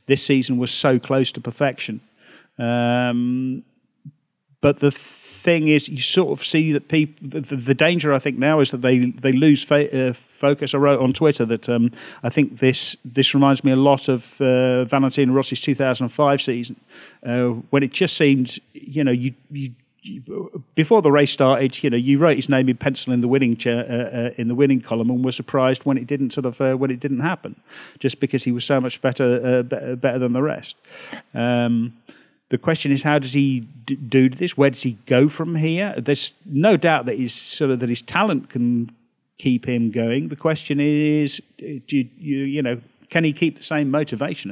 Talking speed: 210 wpm